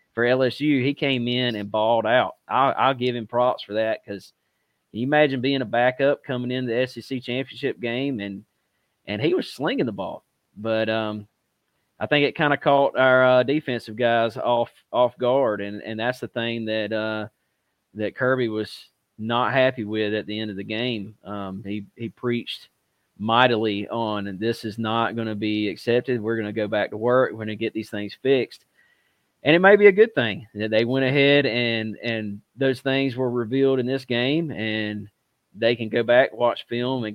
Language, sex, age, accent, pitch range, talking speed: English, male, 30-49, American, 105-125 Hz, 200 wpm